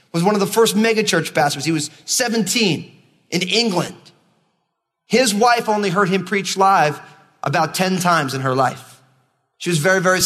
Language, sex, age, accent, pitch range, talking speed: English, male, 30-49, American, 150-205 Hz, 170 wpm